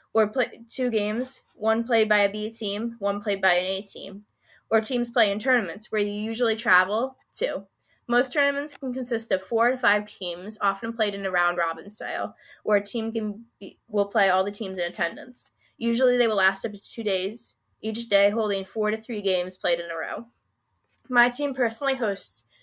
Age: 10-29